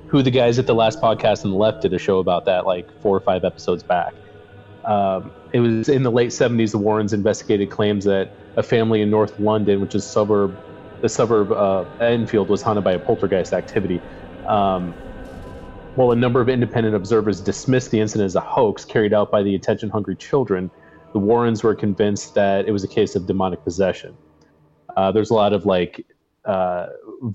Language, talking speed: English, 200 wpm